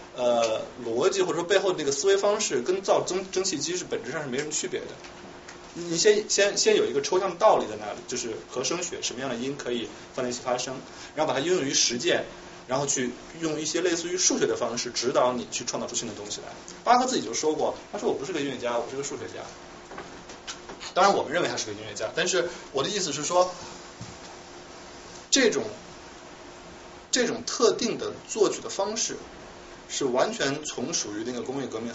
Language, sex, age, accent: Chinese, male, 20-39, native